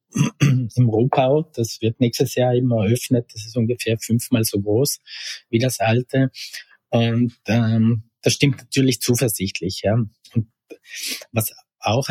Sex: male